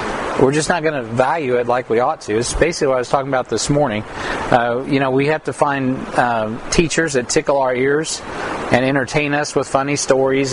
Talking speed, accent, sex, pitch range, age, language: 220 wpm, American, male, 120-145 Hz, 40-59, English